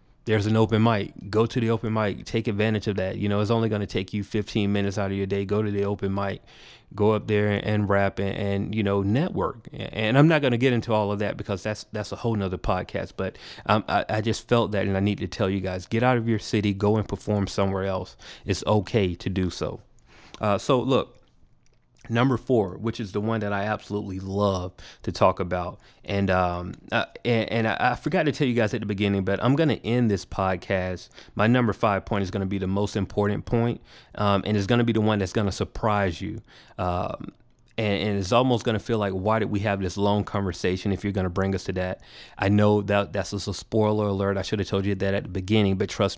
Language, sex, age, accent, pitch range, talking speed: English, male, 30-49, American, 95-115 Hz, 240 wpm